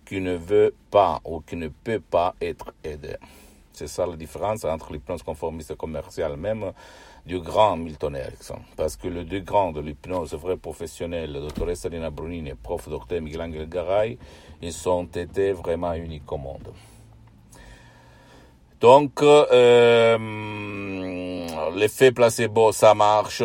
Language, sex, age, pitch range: Italian, male, 60-79, 75-110 Hz